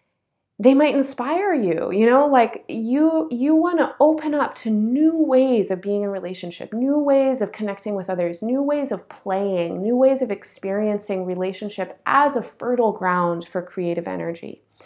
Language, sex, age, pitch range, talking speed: English, female, 30-49, 180-250 Hz, 175 wpm